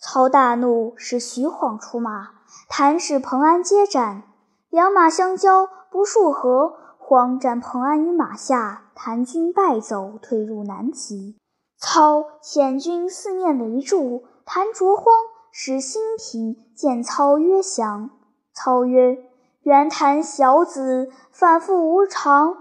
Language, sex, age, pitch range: Chinese, male, 10-29, 250-340 Hz